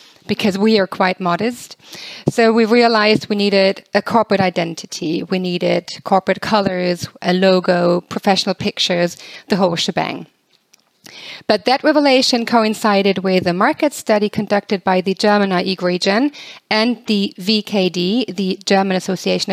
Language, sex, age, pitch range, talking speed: English, female, 30-49, 190-225 Hz, 135 wpm